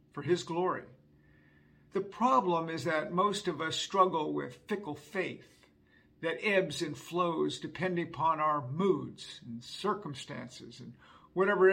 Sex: male